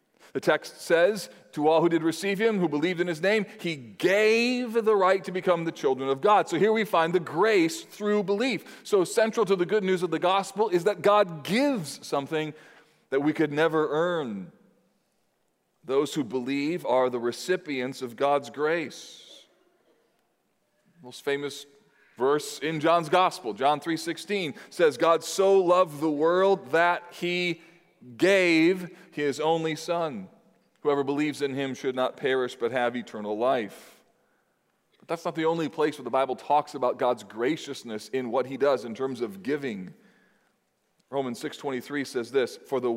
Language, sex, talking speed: English, male, 165 wpm